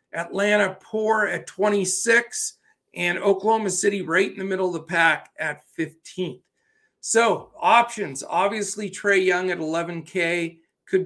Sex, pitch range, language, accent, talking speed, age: male, 160-195 Hz, English, American, 130 wpm, 40-59